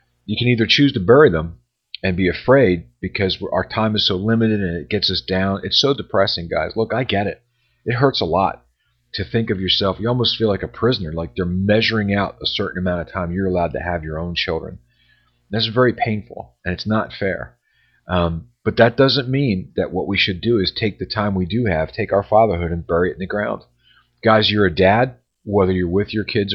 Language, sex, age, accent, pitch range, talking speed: English, male, 40-59, American, 85-110 Hz, 230 wpm